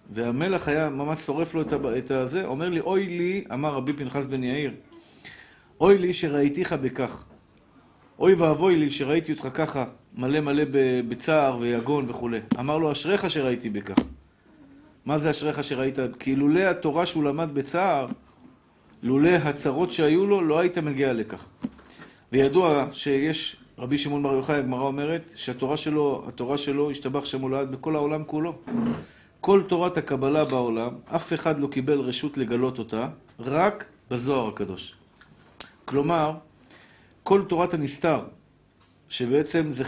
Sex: male